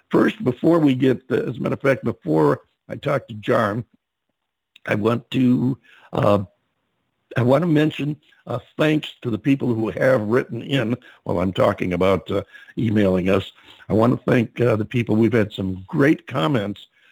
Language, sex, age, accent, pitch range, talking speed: English, male, 60-79, American, 105-135 Hz, 175 wpm